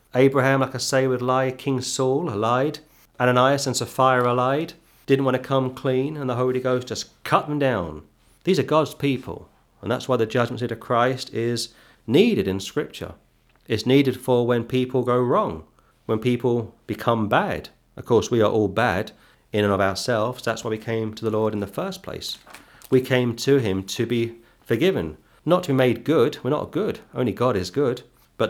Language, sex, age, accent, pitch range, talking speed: English, male, 30-49, British, 115-135 Hz, 200 wpm